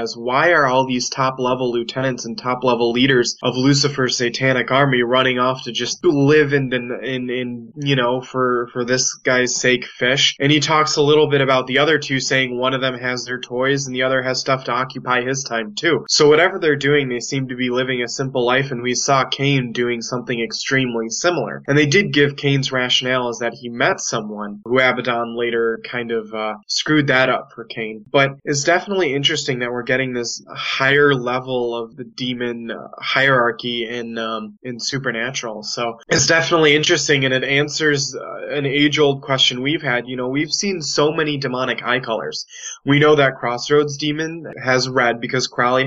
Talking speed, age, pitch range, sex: 195 wpm, 20-39, 120-140 Hz, male